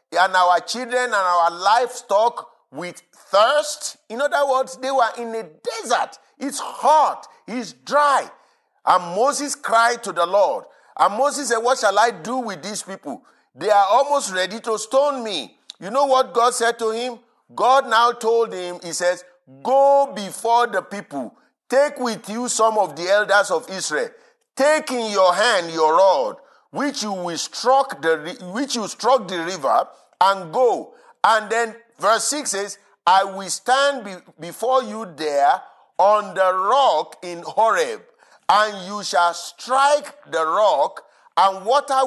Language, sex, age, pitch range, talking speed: English, male, 50-69, 190-275 Hz, 160 wpm